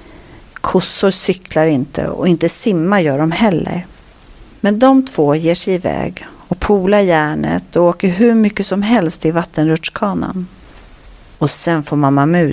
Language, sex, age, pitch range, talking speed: Swedish, female, 40-59, 160-220 Hz, 150 wpm